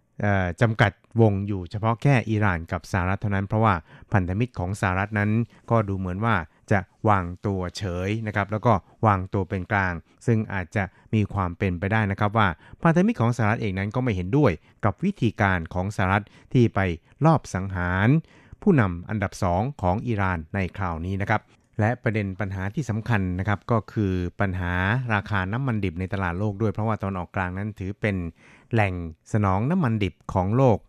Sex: male